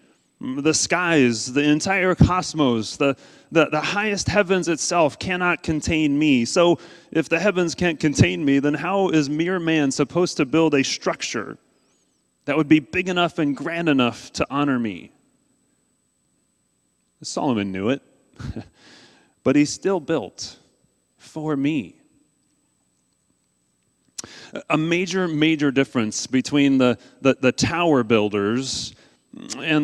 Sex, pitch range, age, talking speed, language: male, 130-175 Hz, 30-49, 125 wpm, English